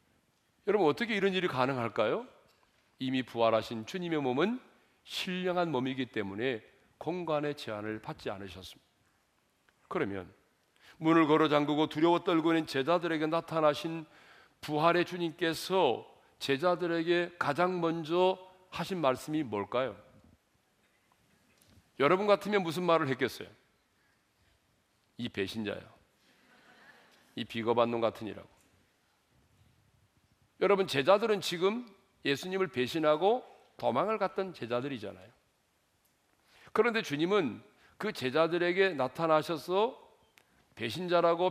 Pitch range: 120-180 Hz